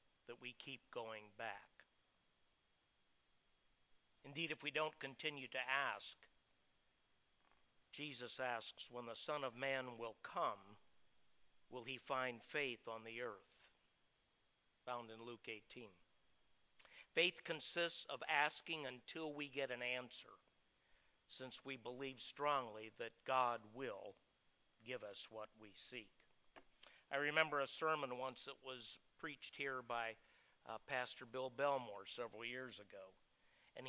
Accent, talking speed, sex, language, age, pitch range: American, 125 wpm, male, English, 60-79, 120-145 Hz